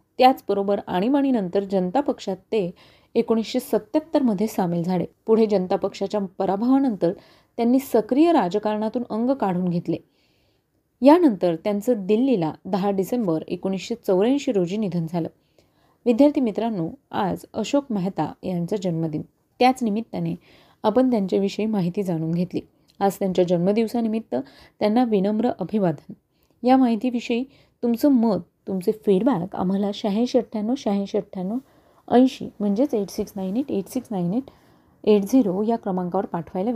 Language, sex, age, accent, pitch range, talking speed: Marathi, female, 30-49, native, 190-250 Hz, 105 wpm